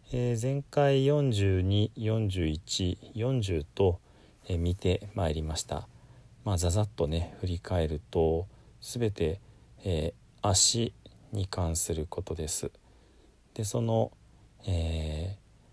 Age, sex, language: 40-59, male, Japanese